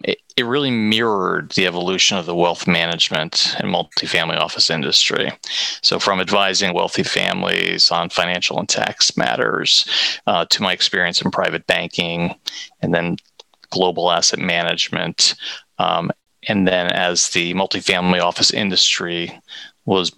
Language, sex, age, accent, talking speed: English, male, 30-49, American, 130 wpm